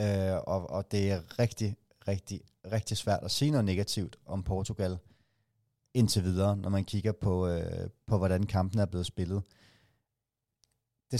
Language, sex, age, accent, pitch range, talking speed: Danish, male, 30-49, native, 95-115 Hz, 155 wpm